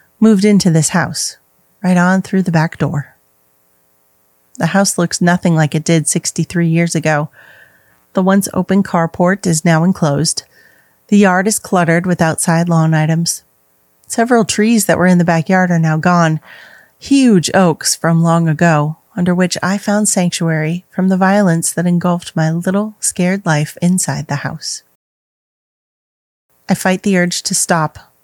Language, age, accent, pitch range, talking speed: English, 30-49, American, 155-185 Hz, 155 wpm